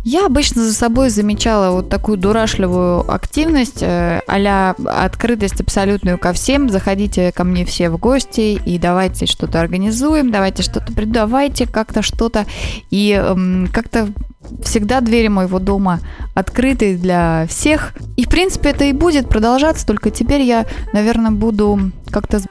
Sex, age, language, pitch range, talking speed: female, 20-39, Russian, 195-255 Hz, 135 wpm